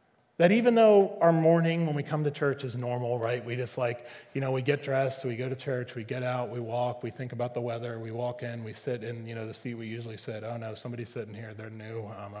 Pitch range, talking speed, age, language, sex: 140-190 Hz, 270 wpm, 30-49, English, male